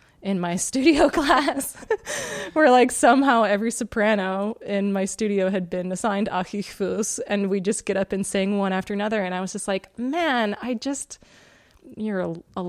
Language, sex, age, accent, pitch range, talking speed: English, female, 20-39, American, 170-205 Hz, 170 wpm